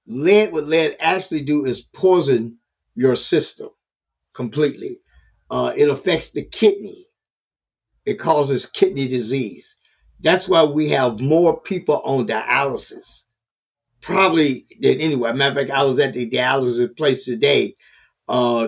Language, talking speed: English, 130 wpm